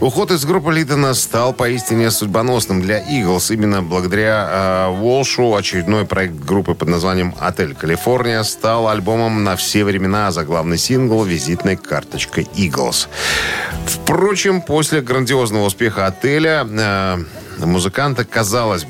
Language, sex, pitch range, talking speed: Russian, male, 90-120 Hz, 125 wpm